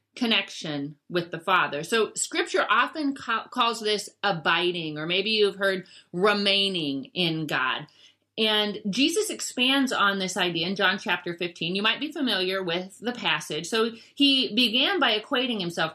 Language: English